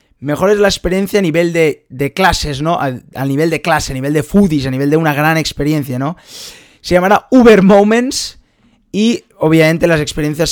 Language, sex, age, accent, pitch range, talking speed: Spanish, male, 20-39, Spanish, 150-195 Hz, 195 wpm